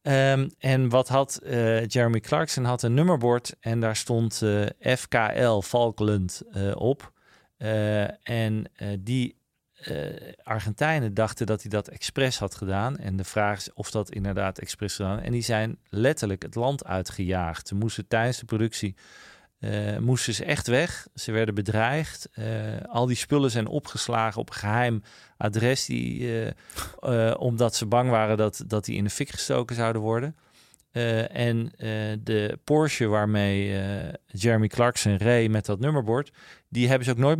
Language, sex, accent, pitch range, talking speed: Dutch, male, Dutch, 105-125 Hz, 165 wpm